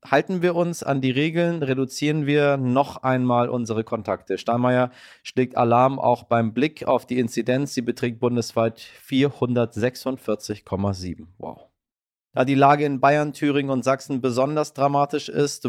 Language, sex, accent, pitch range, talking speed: German, male, German, 115-140 Hz, 140 wpm